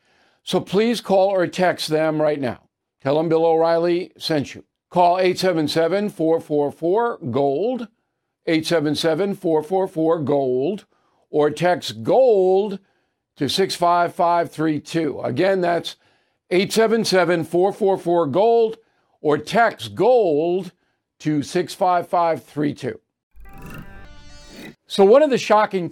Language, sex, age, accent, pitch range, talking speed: English, male, 50-69, American, 150-185 Hz, 80 wpm